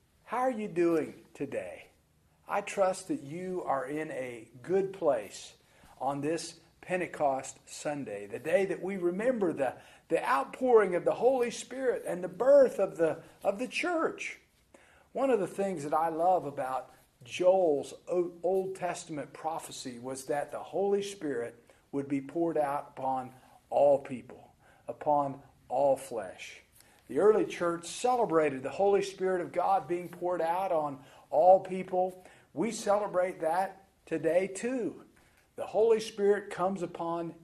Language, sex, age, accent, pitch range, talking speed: English, male, 50-69, American, 150-195 Hz, 145 wpm